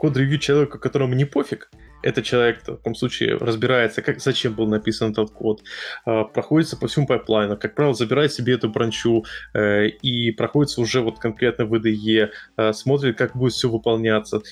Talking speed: 160 wpm